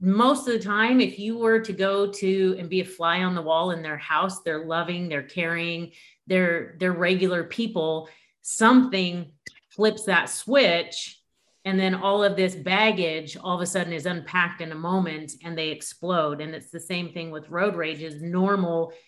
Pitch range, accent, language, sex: 160-185 Hz, American, English, female